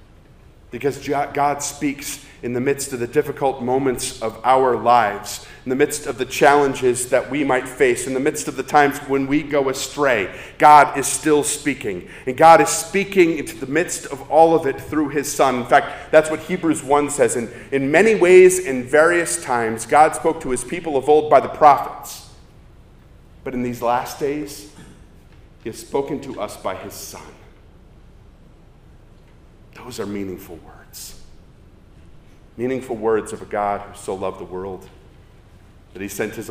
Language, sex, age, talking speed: English, male, 40-59, 175 wpm